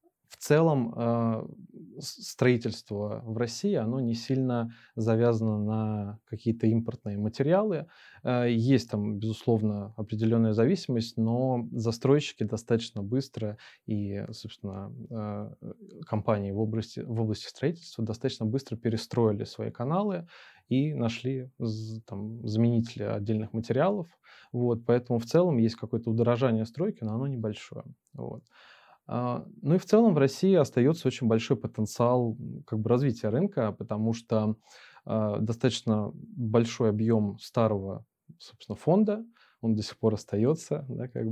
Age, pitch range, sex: 20-39, 110-125 Hz, male